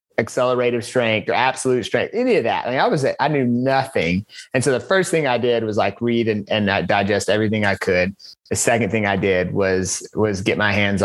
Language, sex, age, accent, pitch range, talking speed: English, male, 30-49, American, 105-135 Hz, 225 wpm